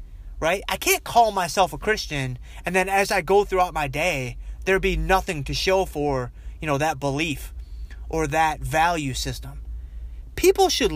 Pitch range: 140-200 Hz